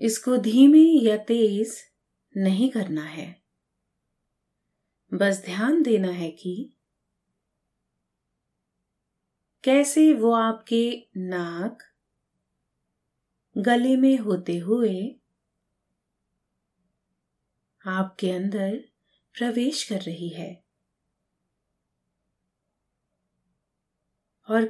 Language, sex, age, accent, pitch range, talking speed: Hindi, female, 30-49, native, 175-235 Hz, 65 wpm